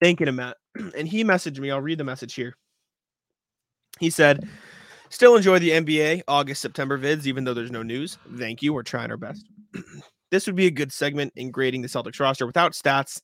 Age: 20-39